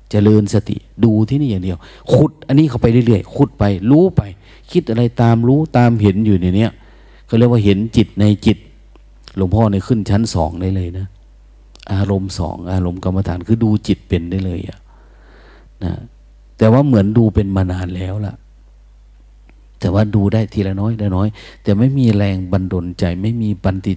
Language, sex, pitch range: Thai, male, 85-110 Hz